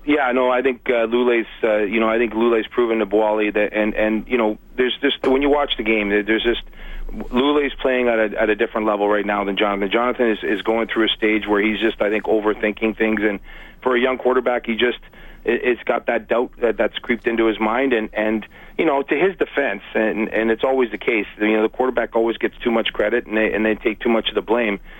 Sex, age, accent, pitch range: male, 40-59, American, 110-125 Hz